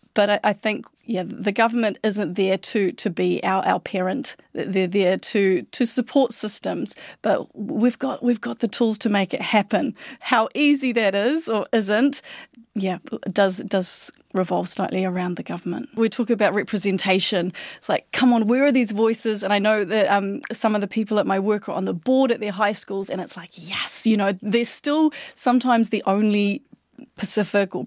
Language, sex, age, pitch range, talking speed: English, female, 30-49, 200-245 Hz, 195 wpm